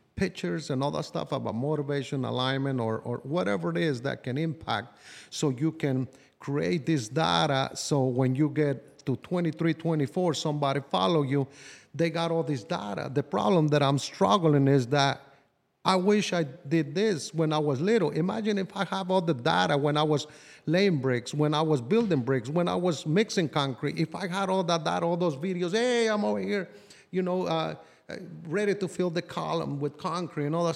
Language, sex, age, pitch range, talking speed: English, male, 50-69, 145-185 Hz, 195 wpm